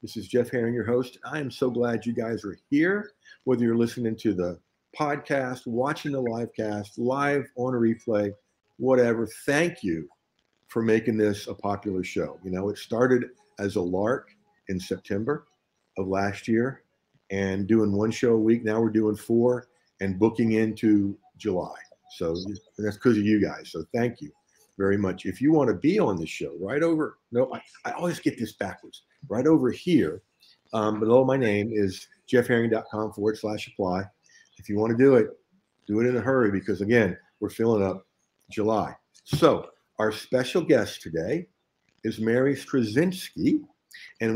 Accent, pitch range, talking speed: American, 100-125 Hz, 175 wpm